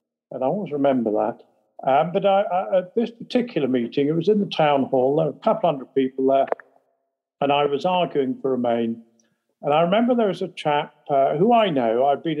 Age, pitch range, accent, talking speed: 50-69, 130-175 Hz, British, 220 wpm